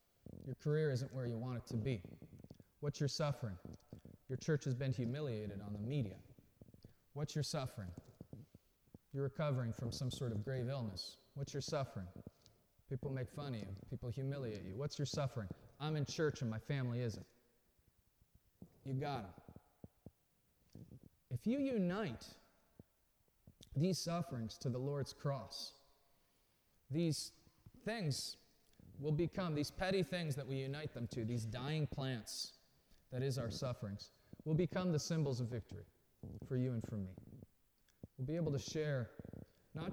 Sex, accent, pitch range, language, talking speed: male, American, 115-160 Hz, English, 150 wpm